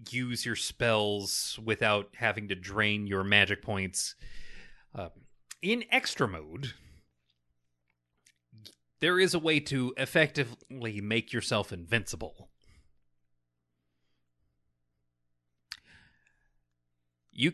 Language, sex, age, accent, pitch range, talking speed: English, male, 30-49, American, 95-145 Hz, 80 wpm